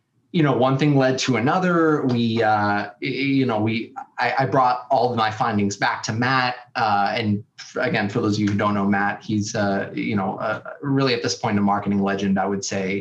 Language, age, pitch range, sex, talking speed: English, 30-49, 105-135 Hz, male, 220 wpm